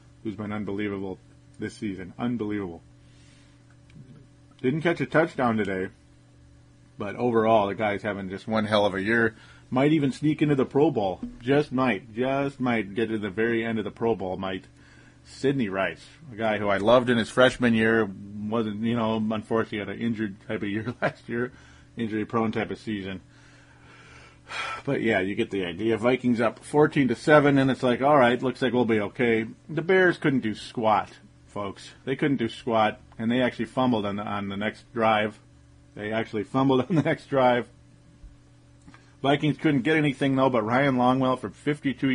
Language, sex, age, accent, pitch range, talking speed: English, male, 30-49, American, 105-125 Hz, 185 wpm